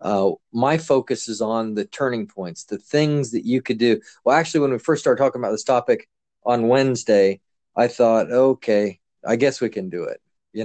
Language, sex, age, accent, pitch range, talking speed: English, male, 40-59, American, 110-145 Hz, 205 wpm